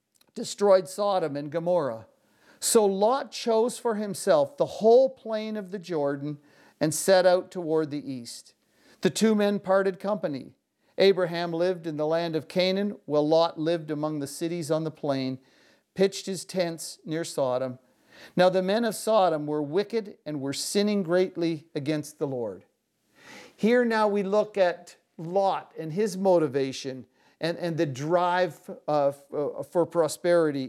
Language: English